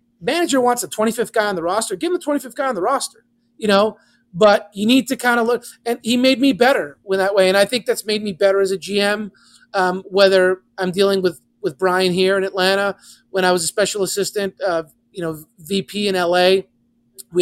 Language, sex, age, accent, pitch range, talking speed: English, male, 30-49, American, 180-225 Hz, 225 wpm